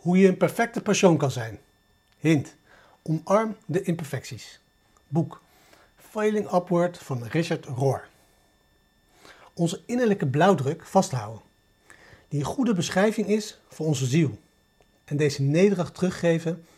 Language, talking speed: Dutch, 120 wpm